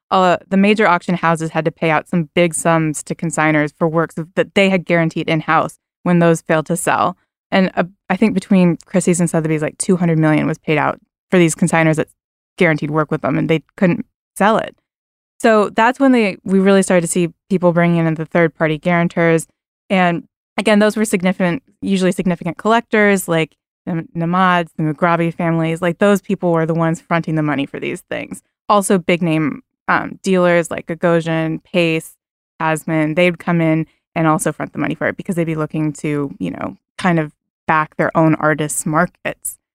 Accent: American